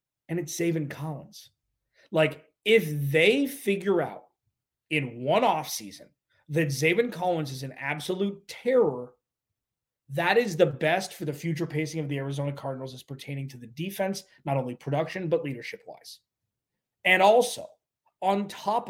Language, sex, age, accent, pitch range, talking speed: English, male, 30-49, American, 140-175 Hz, 145 wpm